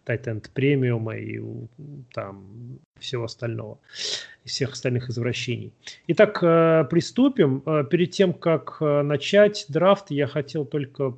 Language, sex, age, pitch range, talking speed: Russian, male, 30-49, 120-145 Hz, 100 wpm